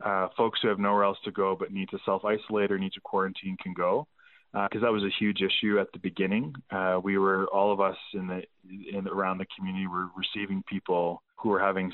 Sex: male